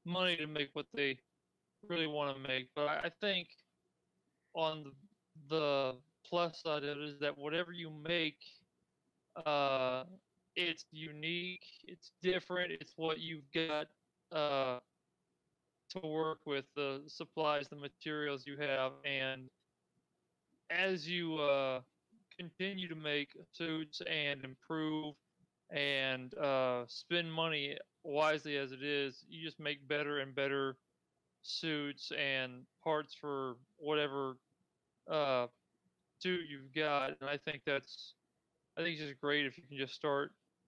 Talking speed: 135 wpm